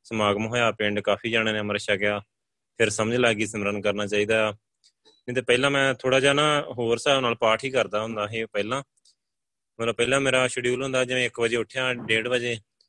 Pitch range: 100-120 Hz